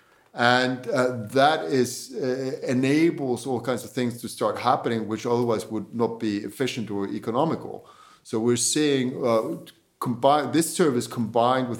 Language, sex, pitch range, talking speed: English, male, 105-125 Hz, 155 wpm